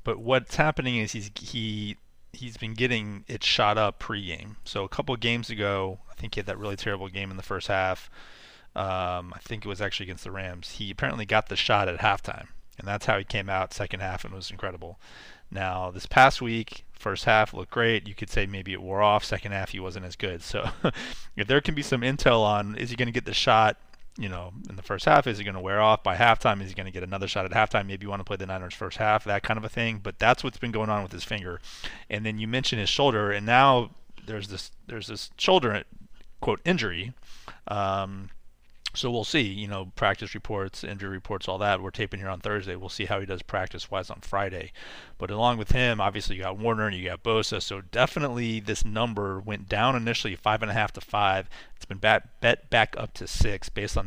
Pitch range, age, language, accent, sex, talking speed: 95-110 Hz, 30-49, English, American, male, 235 wpm